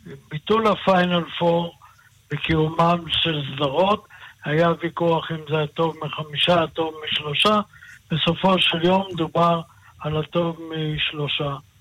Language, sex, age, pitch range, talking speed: Hebrew, male, 60-79, 155-180 Hz, 105 wpm